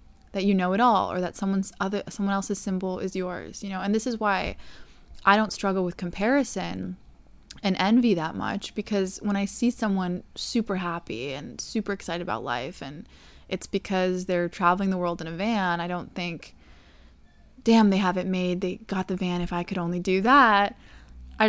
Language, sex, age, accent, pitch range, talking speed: English, female, 20-39, American, 175-205 Hz, 195 wpm